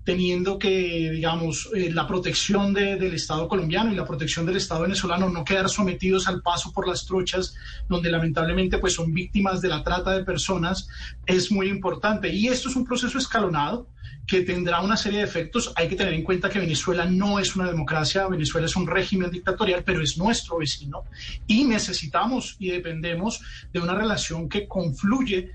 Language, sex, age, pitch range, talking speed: Spanish, male, 30-49, 170-195 Hz, 185 wpm